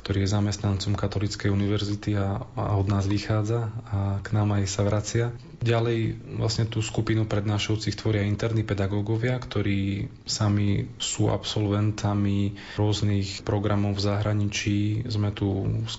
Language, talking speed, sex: Slovak, 130 wpm, male